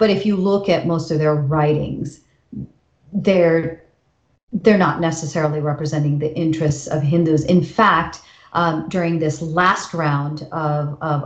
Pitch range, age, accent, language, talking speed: 155-175 Hz, 40-59, American, English, 145 wpm